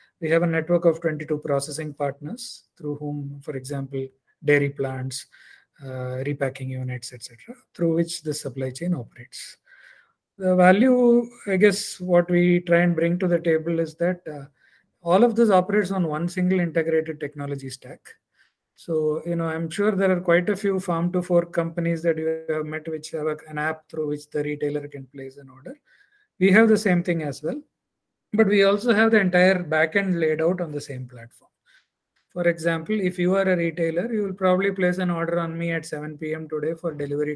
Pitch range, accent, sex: 150-185 Hz, Indian, male